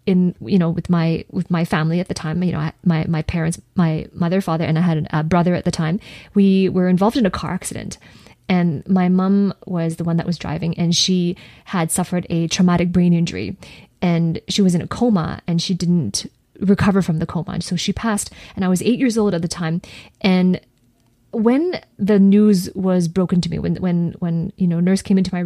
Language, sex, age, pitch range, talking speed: English, female, 20-39, 170-200 Hz, 225 wpm